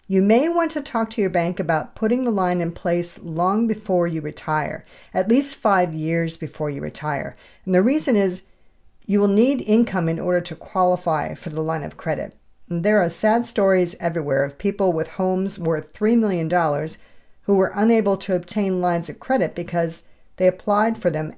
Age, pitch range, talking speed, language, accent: 50-69, 165-215 Hz, 190 wpm, English, American